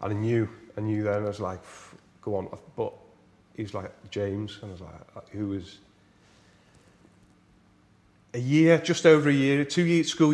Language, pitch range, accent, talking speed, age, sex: English, 95-110 Hz, British, 170 wpm, 30-49, male